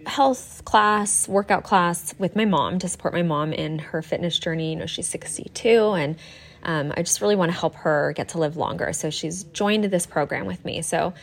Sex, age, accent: female, 20-39, American